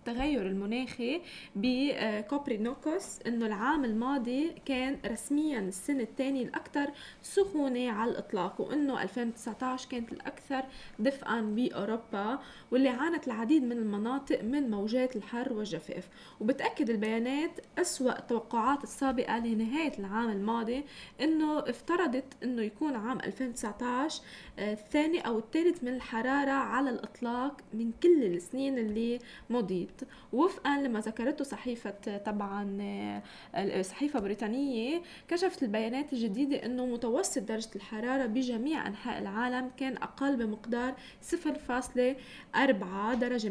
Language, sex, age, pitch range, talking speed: Arabic, female, 20-39, 225-275 Hz, 105 wpm